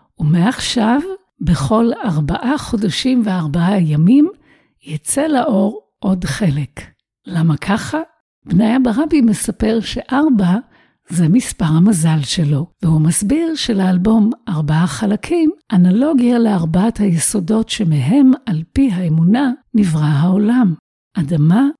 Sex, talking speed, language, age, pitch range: female, 95 wpm, Hebrew, 60-79, 170-255 Hz